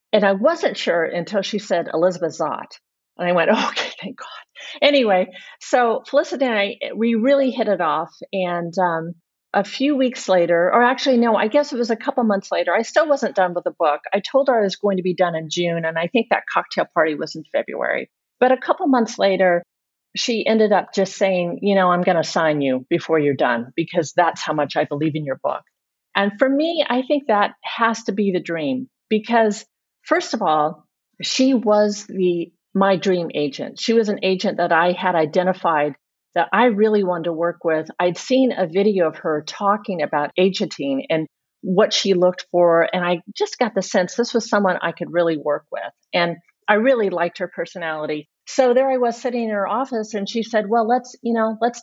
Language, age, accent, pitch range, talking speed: English, 50-69, American, 175-240 Hz, 215 wpm